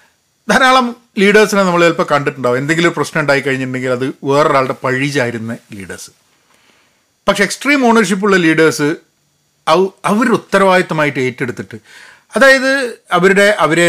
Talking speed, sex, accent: 100 wpm, male, native